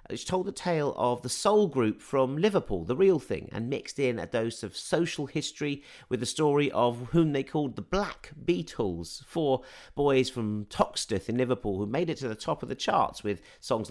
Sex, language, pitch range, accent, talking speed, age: male, English, 105-145 Hz, British, 205 wpm, 40-59